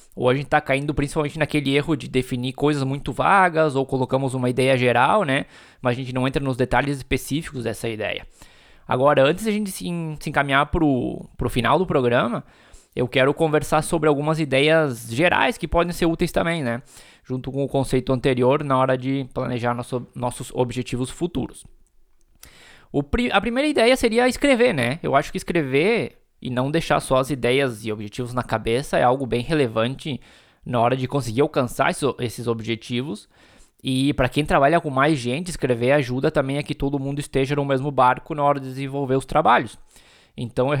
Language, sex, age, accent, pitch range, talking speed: Portuguese, male, 20-39, Brazilian, 125-155 Hz, 185 wpm